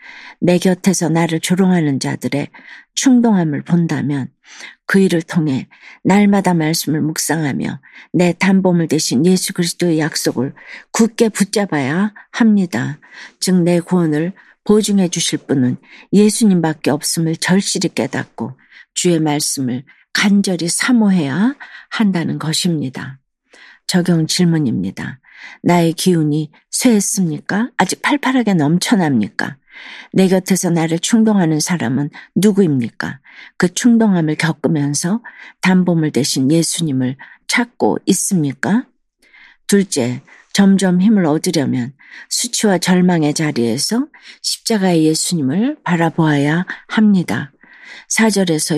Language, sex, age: Korean, female, 50-69